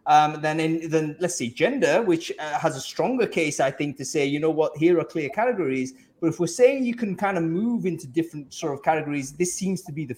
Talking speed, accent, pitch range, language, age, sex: 255 wpm, British, 140-185 Hz, English, 30-49, male